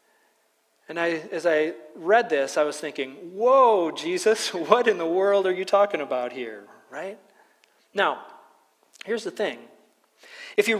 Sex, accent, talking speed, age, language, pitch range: male, American, 145 wpm, 40-59, English, 170-235 Hz